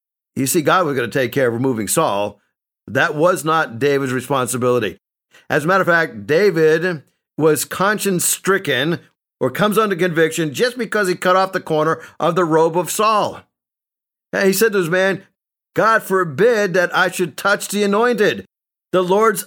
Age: 50-69